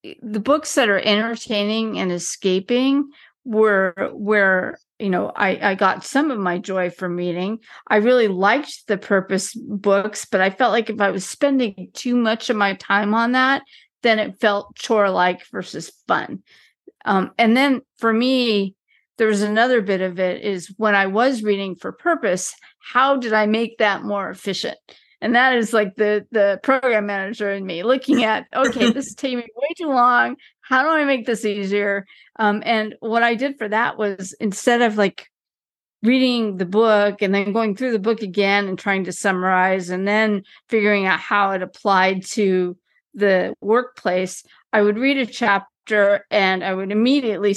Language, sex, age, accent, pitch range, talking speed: English, female, 50-69, American, 195-235 Hz, 180 wpm